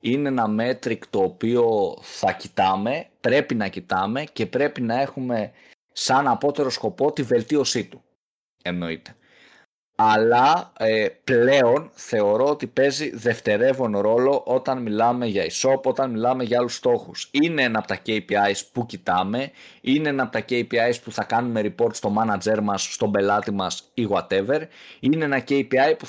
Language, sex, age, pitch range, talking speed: Greek, male, 20-39, 110-135 Hz, 150 wpm